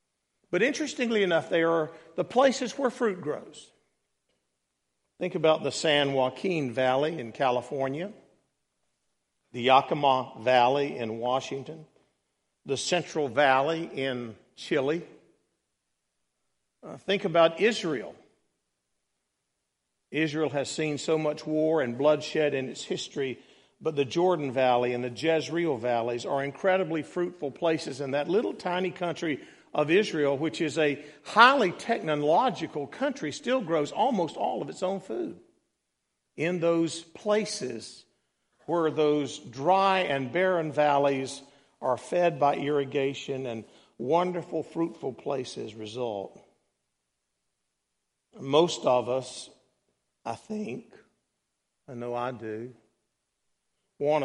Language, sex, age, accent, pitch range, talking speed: English, male, 50-69, American, 130-165 Hz, 115 wpm